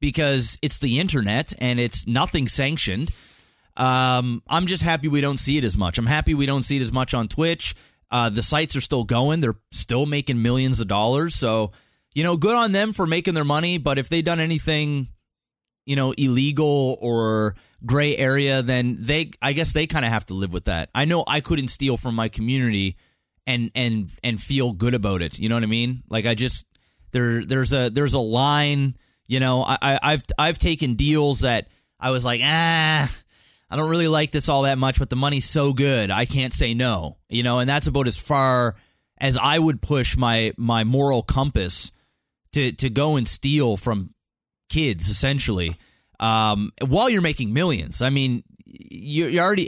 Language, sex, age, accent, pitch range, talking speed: English, male, 30-49, American, 120-155 Hz, 200 wpm